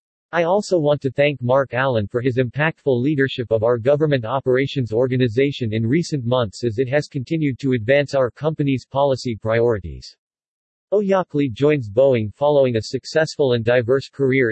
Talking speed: 155 wpm